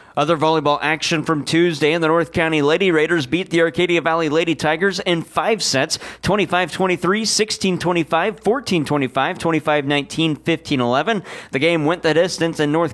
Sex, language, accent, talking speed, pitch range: male, English, American, 150 wpm, 150-185 Hz